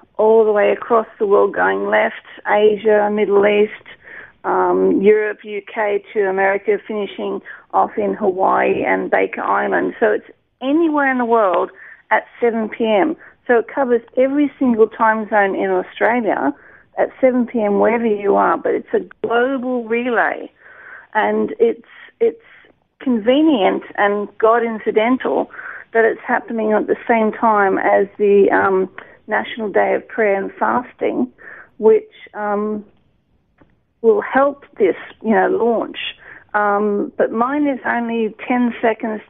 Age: 40-59